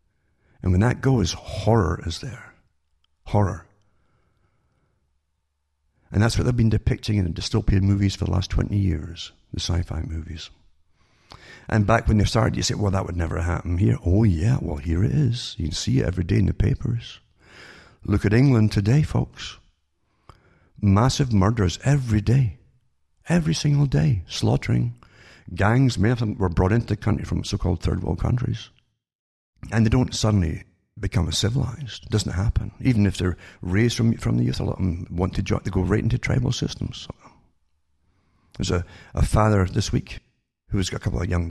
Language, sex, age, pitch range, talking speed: English, male, 60-79, 90-115 Hz, 175 wpm